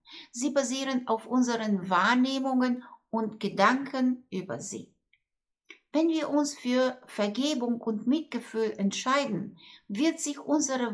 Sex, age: female, 60-79